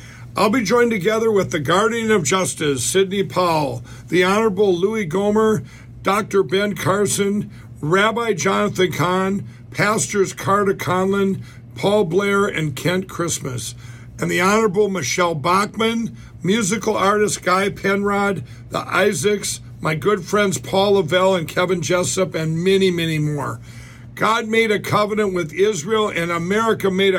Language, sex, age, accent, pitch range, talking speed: English, male, 60-79, American, 150-200 Hz, 135 wpm